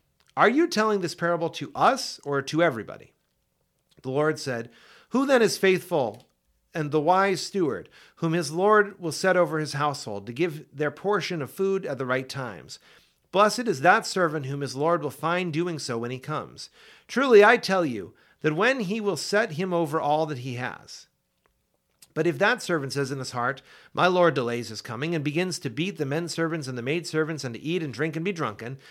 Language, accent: English, American